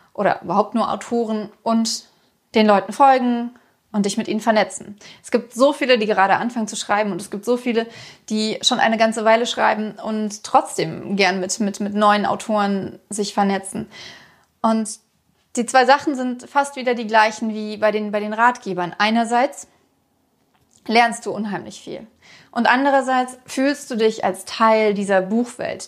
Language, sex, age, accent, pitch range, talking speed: German, female, 30-49, German, 210-245 Hz, 165 wpm